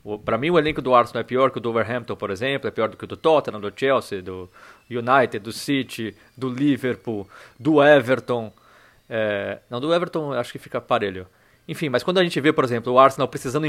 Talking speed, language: 220 wpm, Portuguese